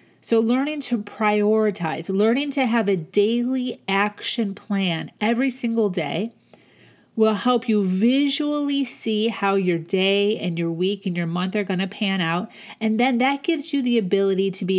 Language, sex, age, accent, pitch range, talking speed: English, female, 30-49, American, 190-235 Hz, 170 wpm